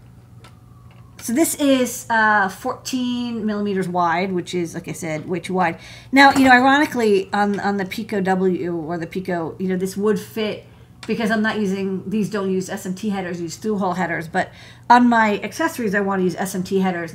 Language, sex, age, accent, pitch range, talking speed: English, female, 40-59, American, 180-220 Hz, 190 wpm